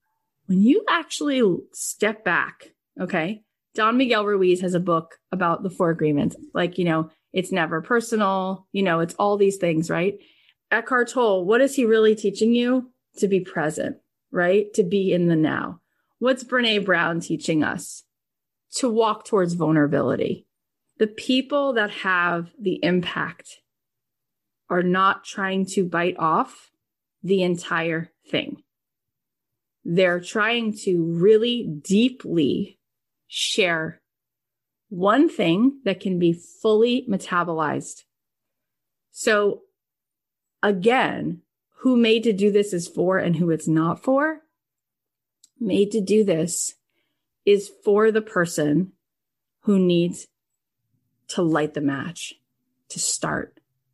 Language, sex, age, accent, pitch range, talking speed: English, female, 20-39, American, 170-220 Hz, 125 wpm